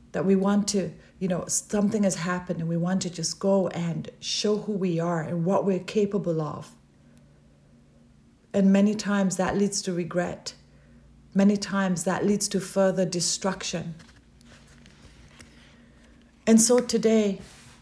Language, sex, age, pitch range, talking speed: English, female, 40-59, 180-210 Hz, 140 wpm